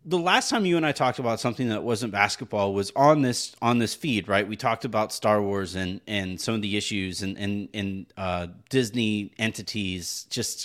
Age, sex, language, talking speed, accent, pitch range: 30-49, male, English, 210 wpm, American, 105-135 Hz